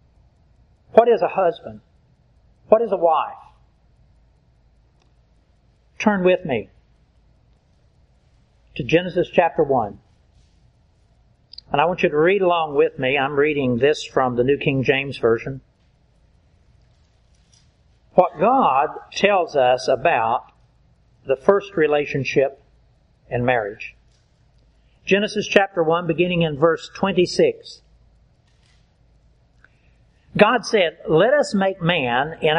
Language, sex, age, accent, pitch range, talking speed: English, male, 60-79, American, 140-200 Hz, 105 wpm